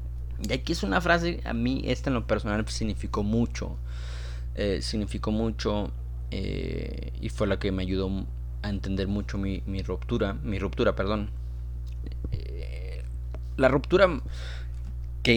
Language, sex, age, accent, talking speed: Spanish, male, 20-39, Mexican, 140 wpm